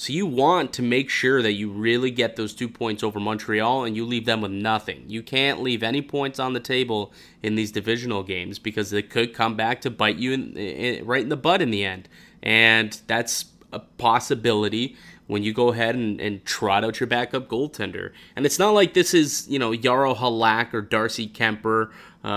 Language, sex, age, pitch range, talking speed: English, male, 20-39, 110-135 Hz, 205 wpm